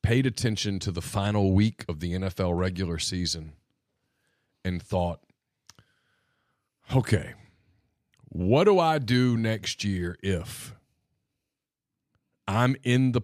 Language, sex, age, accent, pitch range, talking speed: English, male, 40-59, American, 95-130 Hz, 110 wpm